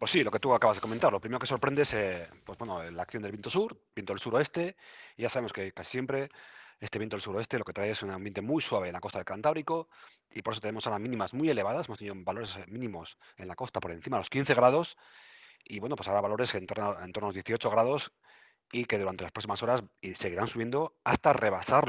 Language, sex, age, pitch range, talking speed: Spanish, male, 30-49, 95-125 Hz, 250 wpm